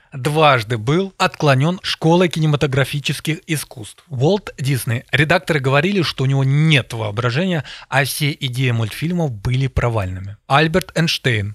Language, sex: Russian, male